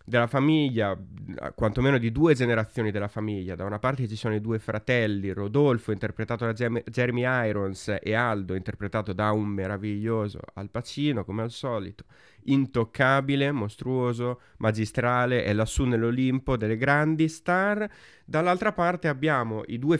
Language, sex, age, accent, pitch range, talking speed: Italian, male, 20-39, native, 115-145 Hz, 140 wpm